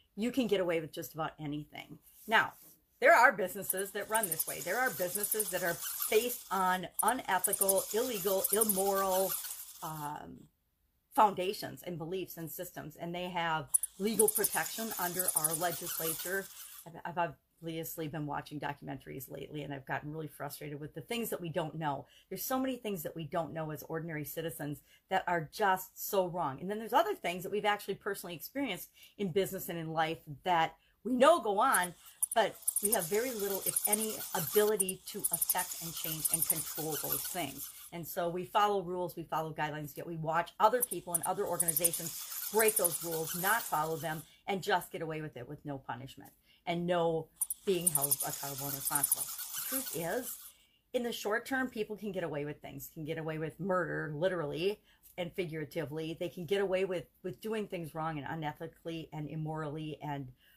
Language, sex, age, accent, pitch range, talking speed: English, female, 40-59, American, 160-200 Hz, 180 wpm